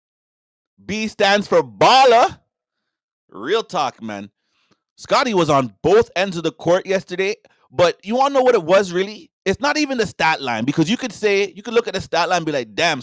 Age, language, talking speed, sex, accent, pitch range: 30-49, English, 210 wpm, male, American, 145-215 Hz